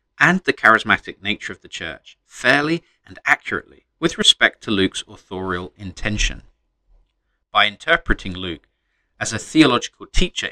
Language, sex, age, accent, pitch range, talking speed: English, male, 40-59, British, 100-165 Hz, 130 wpm